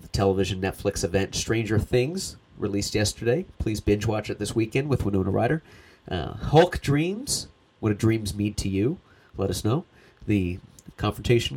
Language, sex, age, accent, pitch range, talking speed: English, male, 30-49, American, 90-110 Hz, 155 wpm